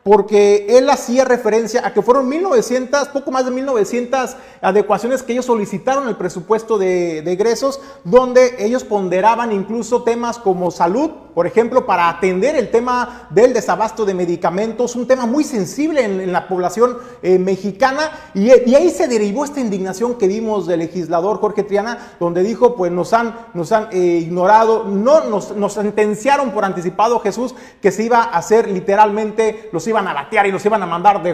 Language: Spanish